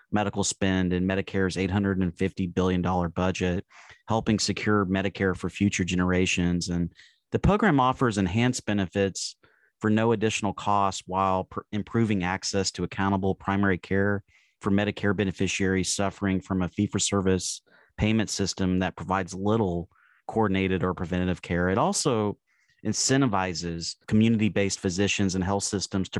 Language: English